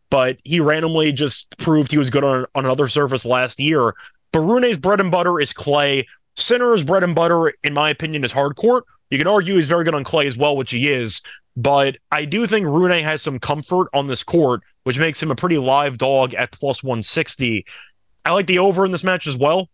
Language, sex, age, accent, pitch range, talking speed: English, male, 20-39, American, 130-160 Hz, 225 wpm